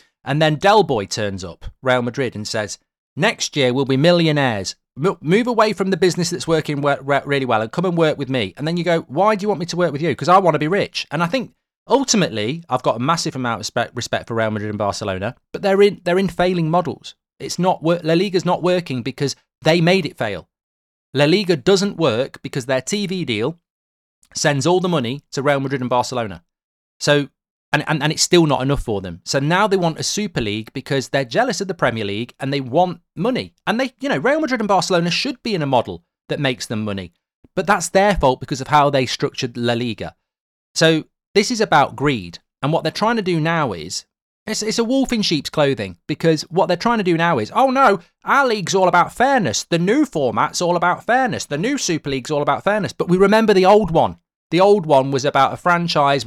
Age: 30-49